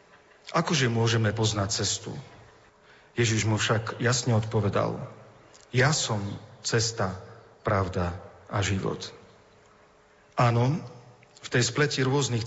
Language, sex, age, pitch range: Slovak, male, 40-59, 105-130 Hz